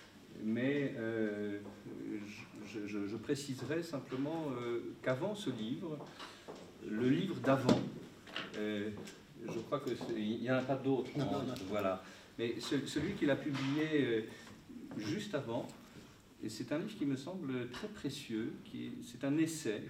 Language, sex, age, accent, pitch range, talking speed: French, male, 50-69, French, 110-140 Hz, 140 wpm